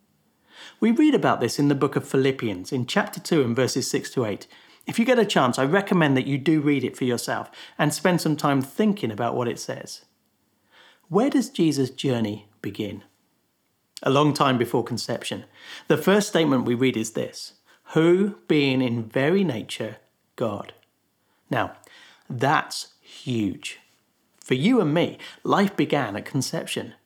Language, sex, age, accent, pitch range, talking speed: English, male, 40-59, British, 130-185 Hz, 165 wpm